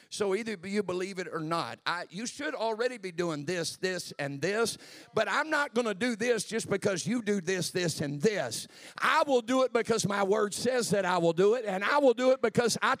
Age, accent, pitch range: 50-69, American, 170-245 Hz